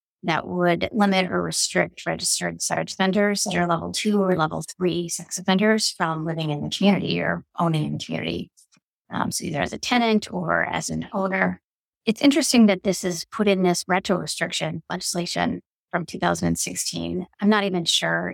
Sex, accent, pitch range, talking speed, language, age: female, American, 165-210 Hz, 175 wpm, English, 30-49